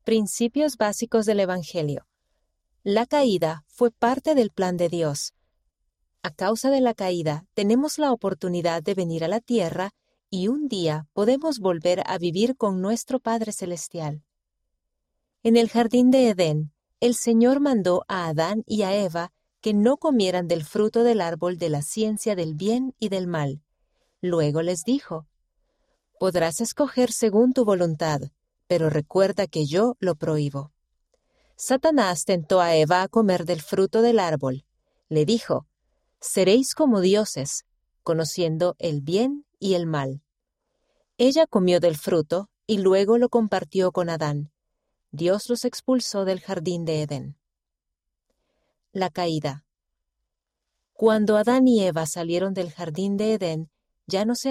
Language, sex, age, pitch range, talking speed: Spanish, female, 40-59, 165-230 Hz, 145 wpm